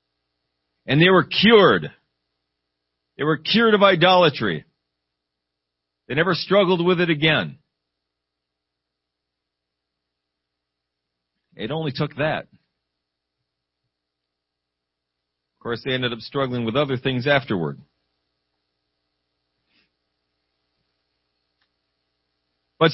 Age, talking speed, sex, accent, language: 40-59, 80 wpm, male, American, English